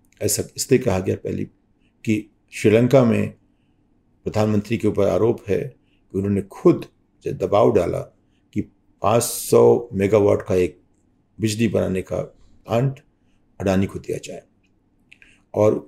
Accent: native